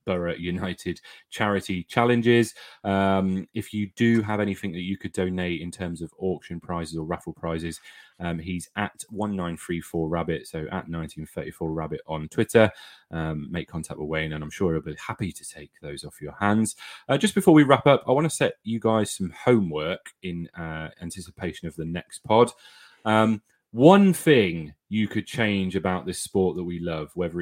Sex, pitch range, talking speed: male, 85-105 Hz, 185 wpm